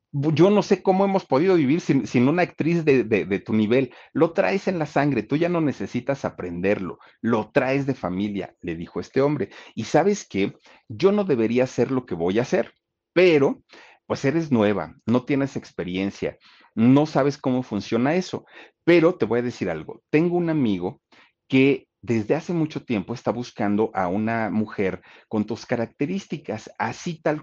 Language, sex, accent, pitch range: Spanish, male, Mexican, 105-155 Hz